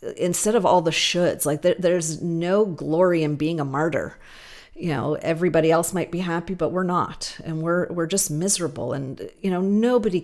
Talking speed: 195 wpm